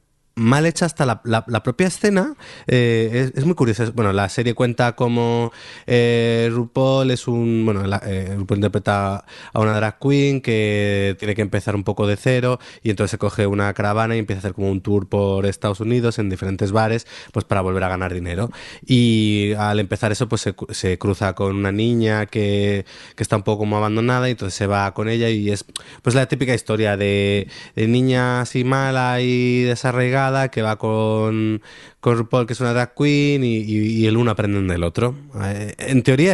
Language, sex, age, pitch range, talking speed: Spanish, male, 20-39, 105-130 Hz, 200 wpm